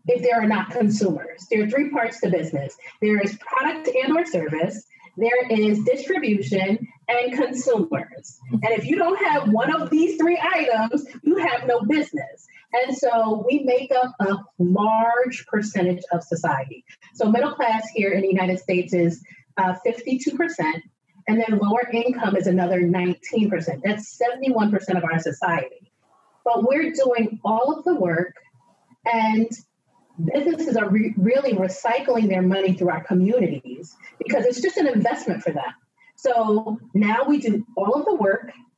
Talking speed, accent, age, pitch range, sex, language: 155 wpm, American, 30-49, 190-250 Hz, female, English